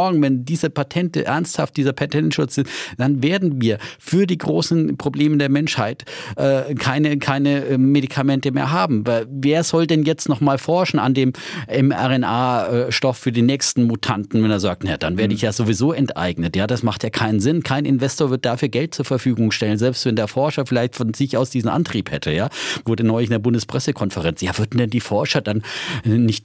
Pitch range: 115-145 Hz